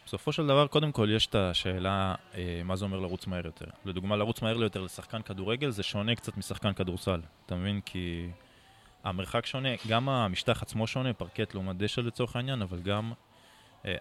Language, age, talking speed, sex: Hebrew, 20-39, 190 wpm, male